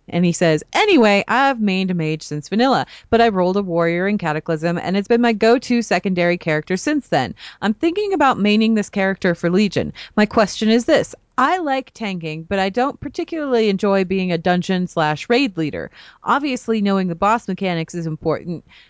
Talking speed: 190 wpm